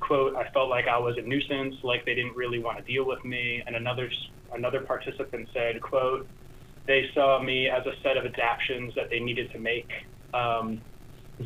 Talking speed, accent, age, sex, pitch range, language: 200 wpm, American, 20-39, male, 120-140 Hz, English